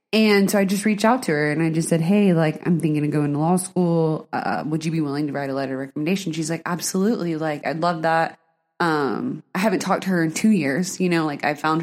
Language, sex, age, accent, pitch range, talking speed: English, female, 20-39, American, 155-200 Hz, 270 wpm